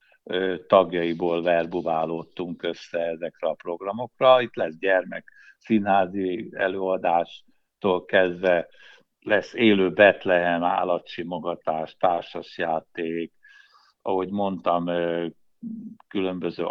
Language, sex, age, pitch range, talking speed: Hungarian, male, 60-79, 90-115 Hz, 70 wpm